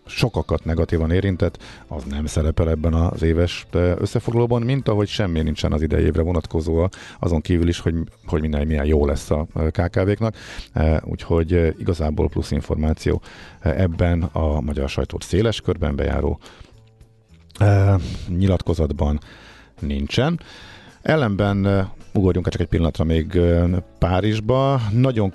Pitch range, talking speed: 80-100 Hz, 120 wpm